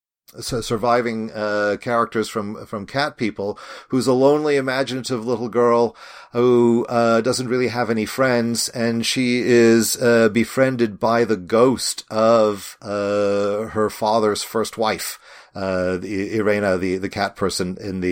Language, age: English, 40-59